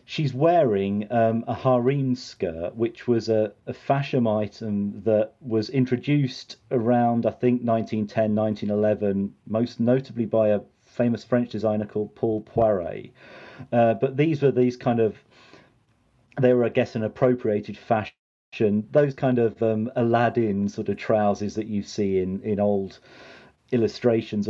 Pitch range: 105-125 Hz